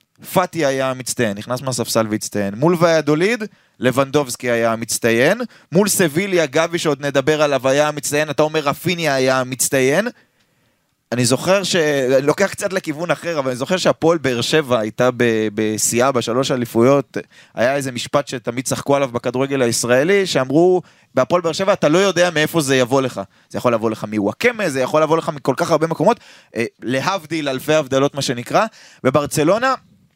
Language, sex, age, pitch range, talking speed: Hebrew, male, 20-39, 130-175 Hz, 135 wpm